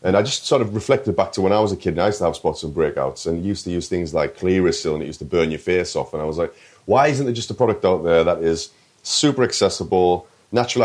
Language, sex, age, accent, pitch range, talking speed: English, male, 30-49, British, 85-110 Hz, 295 wpm